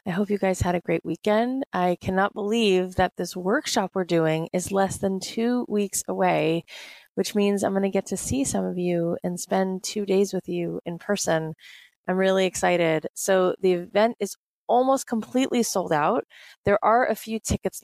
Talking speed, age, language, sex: 190 wpm, 20-39, English, female